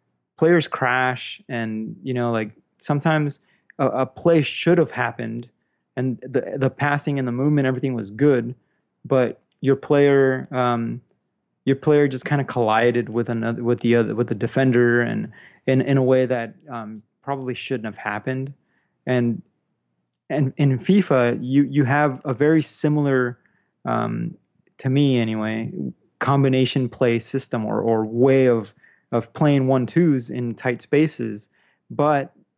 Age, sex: 20-39, male